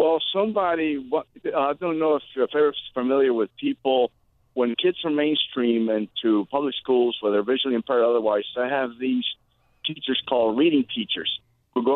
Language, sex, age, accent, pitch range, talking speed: English, male, 50-69, American, 115-145 Hz, 160 wpm